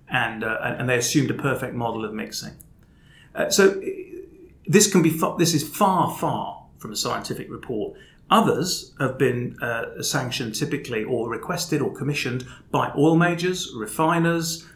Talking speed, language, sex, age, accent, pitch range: 155 wpm, English, male, 30-49, British, 125-170 Hz